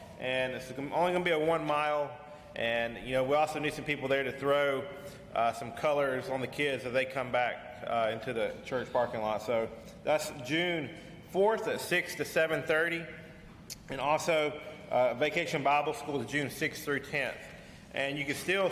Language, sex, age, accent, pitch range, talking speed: English, male, 30-49, American, 130-155 Hz, 185 wpm